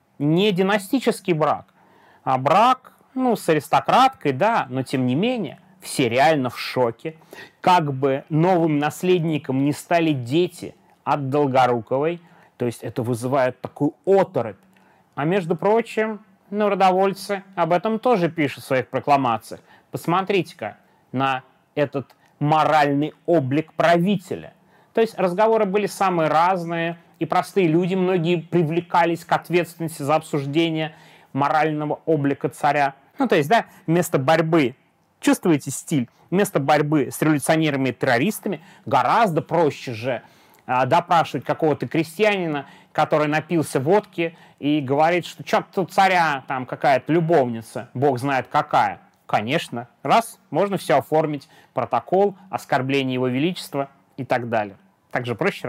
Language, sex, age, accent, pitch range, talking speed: Russian, male, 30-49, native, 140-185 Hz, 125 wpm